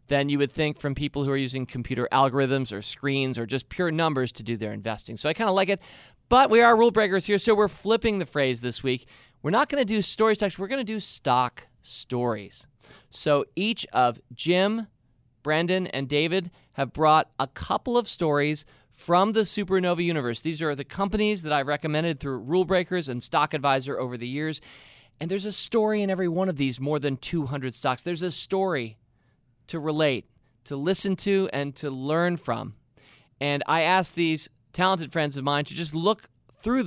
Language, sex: English, male